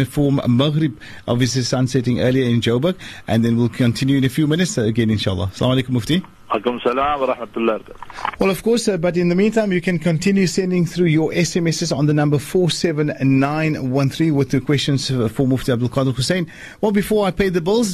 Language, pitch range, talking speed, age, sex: English, 115-150 Hz, 180 wpm, 40-59, male